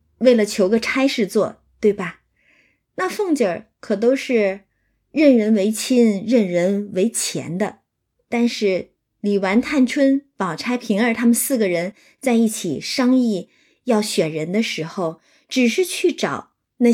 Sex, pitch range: female, 210-275 Hz